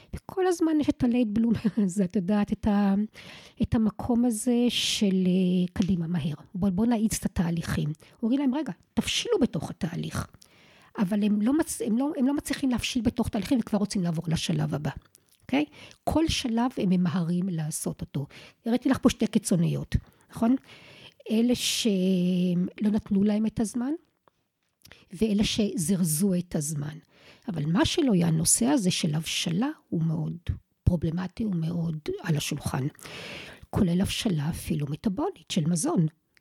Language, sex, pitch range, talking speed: Hebrew, female, 175-240 Hz, 145 wpm